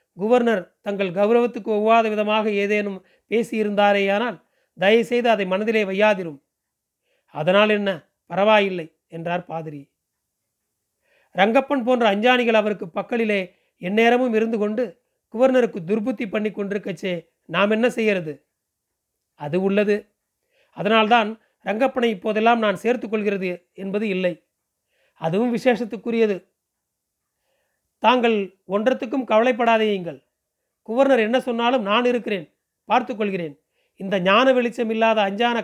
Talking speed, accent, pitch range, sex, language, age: 100 wpm, native, 185-235 Hz, male, Tamil, 40-59